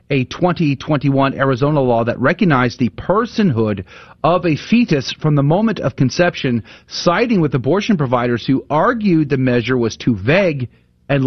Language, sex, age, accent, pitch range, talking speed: English, male, 40-59, American, 125-170 Hz, 150 wpm